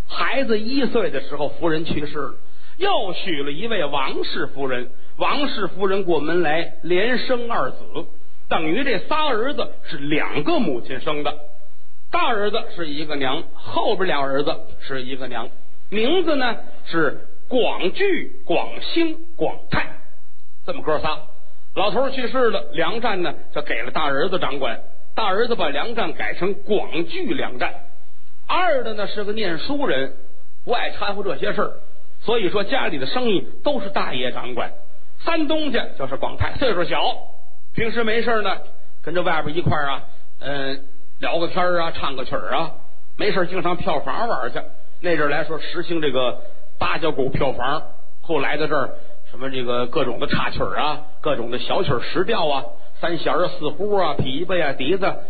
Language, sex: Chinese, male